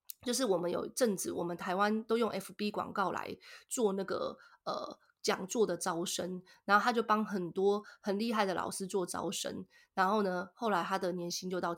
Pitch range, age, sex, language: 185-245 Hz, 20-39, female, Chinese